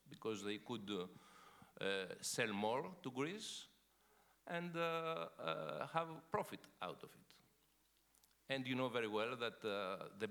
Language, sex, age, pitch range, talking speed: French, male, 50-69, 100-140 Hz, 145 wpm